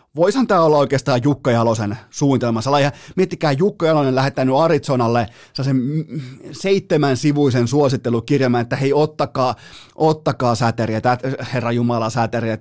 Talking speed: 110 wpm